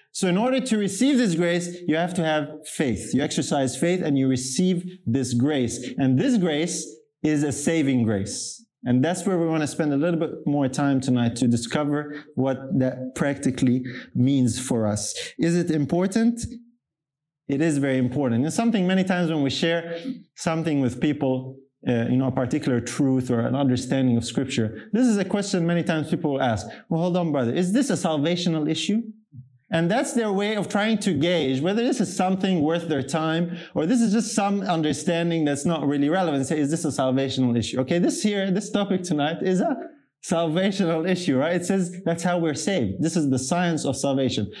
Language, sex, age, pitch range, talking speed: English, male, 30-49, 130-180 Hz, 200 wpm